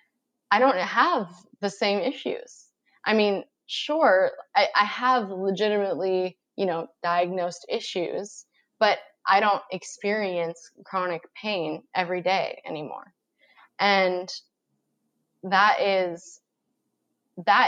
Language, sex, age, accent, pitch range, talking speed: English, female, 20-39, American, 180-250 Hz, 95 wpm